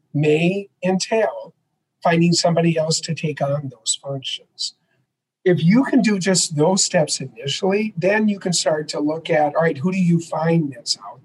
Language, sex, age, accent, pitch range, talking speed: English, male, 50-69, American, 150-180 Hz, 175 wpm